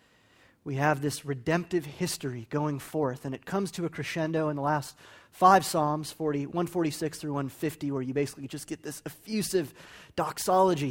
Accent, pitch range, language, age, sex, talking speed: American, 140-185 Hz, English, 30-49, male, 160 wpm